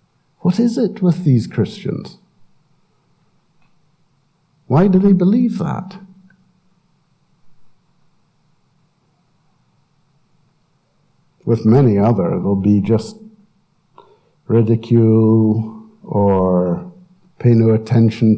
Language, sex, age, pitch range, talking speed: English, male, 60-79, 125-175 Hz, 75 wpm